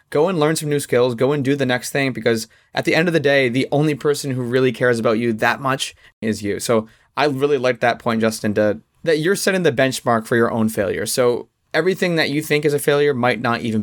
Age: 20-39